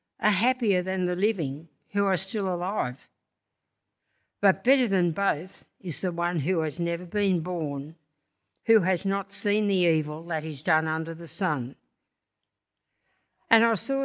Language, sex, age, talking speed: English, female, 60-79, 155 wpm